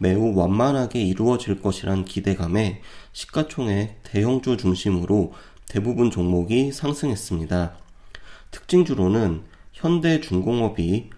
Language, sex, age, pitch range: Korean, male, 30-49, 90-125 Hz